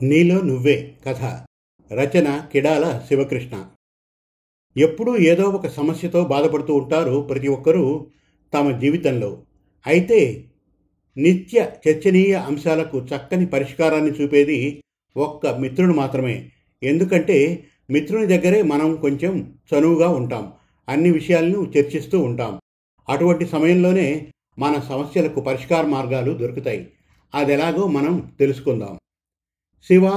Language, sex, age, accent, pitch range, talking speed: Telugu, male, 50-69, native, 135-170 Hz, 95 wpm